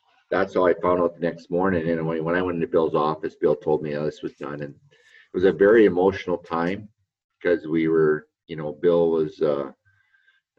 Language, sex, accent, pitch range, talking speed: English, male, American, 75-100 Hz, 215 wpm